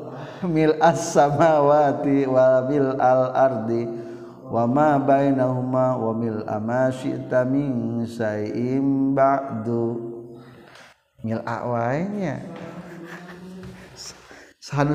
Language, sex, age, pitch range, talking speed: Indonesian, male, 50-69, 120-150 Hz, 65 wpm